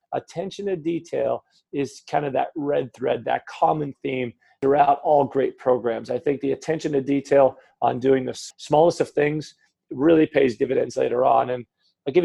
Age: 40-59